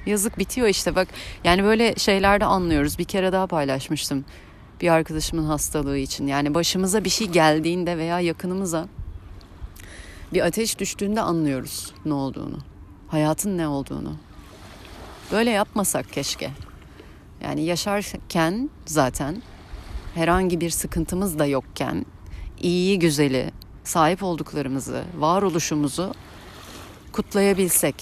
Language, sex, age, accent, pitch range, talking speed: Turkish, female, 30-49, native, 125-195 Hz, 105 wpm